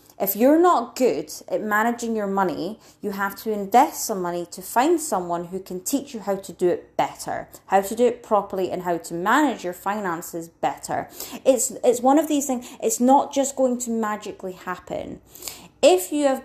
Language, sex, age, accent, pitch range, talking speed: English, female, 30-49, British, 180-240 Hz, 195 wpm